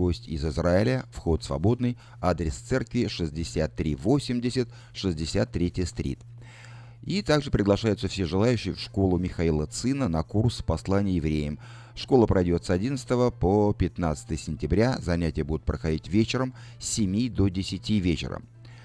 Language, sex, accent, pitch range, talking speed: Russian, male, native, 85-120 Hz, 120 wpm